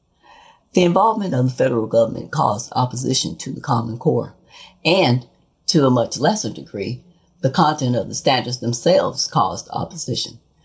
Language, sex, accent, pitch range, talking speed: English, female, American, 115-145 Hz, 145 wpm